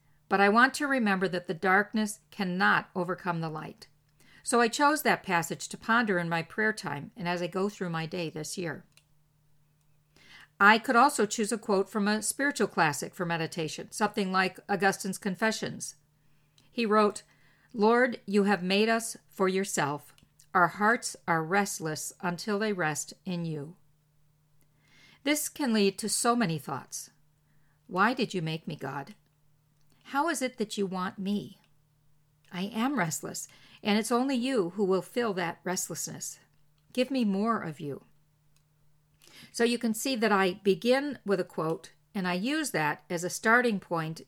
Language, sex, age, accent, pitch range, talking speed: English, female, 50-69, American, 155-215 Hz, 165 wpm